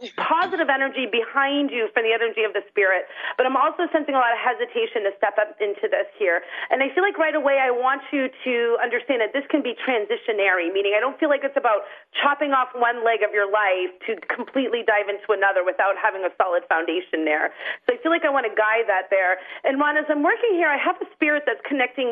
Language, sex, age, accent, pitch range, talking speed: English, female, 40-59, American, 220-300 Hz, 235 wpm